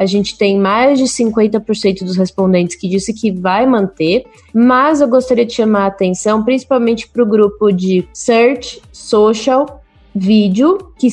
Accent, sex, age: Brazilian, female, 20-39